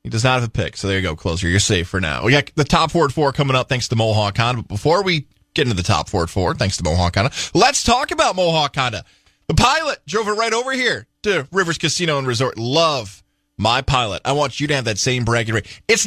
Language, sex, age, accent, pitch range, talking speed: English, male, 20-39, American, 120-180 Hz, 260 wpm